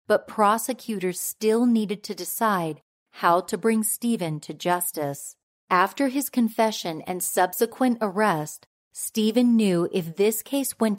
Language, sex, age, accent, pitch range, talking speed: English, female, 40-59, American, 170-225 Hz, 130 wpm